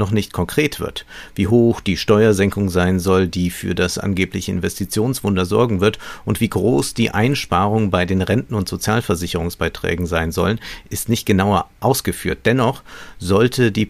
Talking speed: 155 wpm